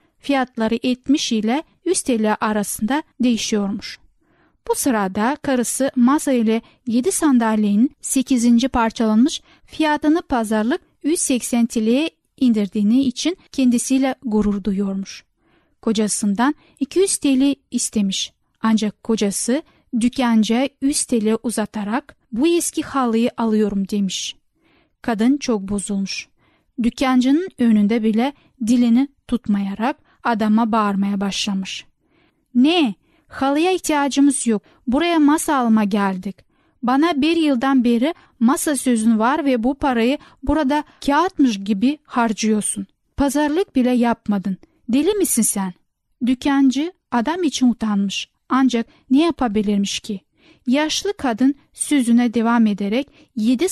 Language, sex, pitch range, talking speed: Turkish, female, 220-280 Hz, 105 wpm